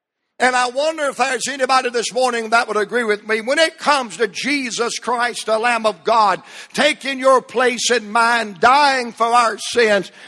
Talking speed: 185 wpm